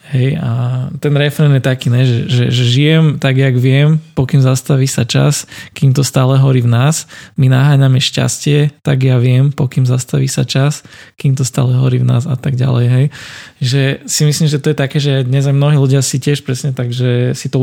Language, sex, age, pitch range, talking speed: Slovak, male, 20-39, 130-145 Hz, 210 wpm